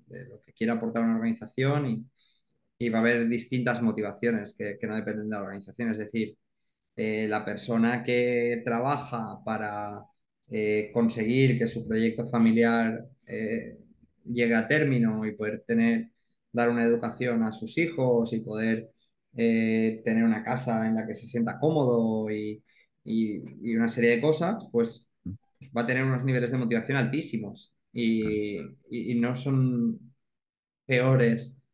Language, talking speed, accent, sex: Spanish, 155 wpm, Spanish, male